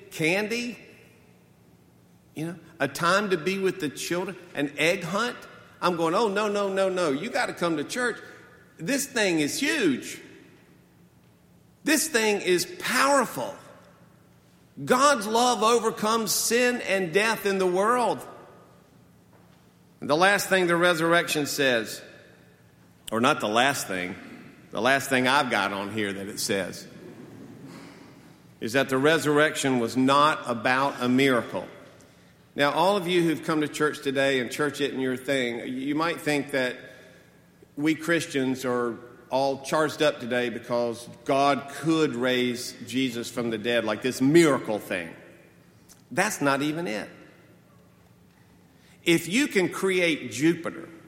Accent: American